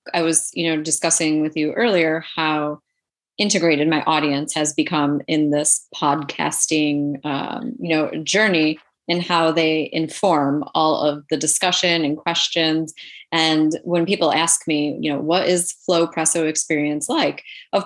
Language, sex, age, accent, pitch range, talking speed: English, female, 30-49, American, 155-180 Hz, 150 wpm